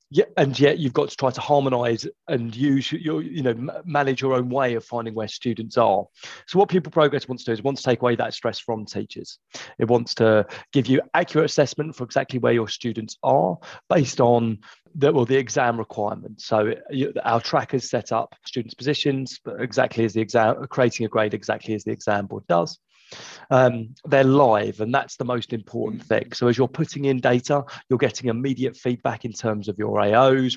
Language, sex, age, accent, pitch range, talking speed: English, male, 30-49, British, 110-135 Hz, 205 wpm